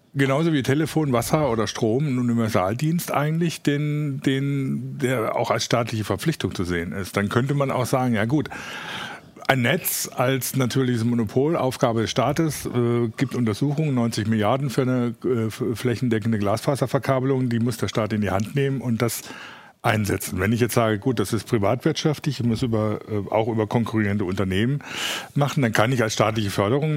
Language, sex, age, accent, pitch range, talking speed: German, male, 50-69, German, 110-140 Hz, 175 wpm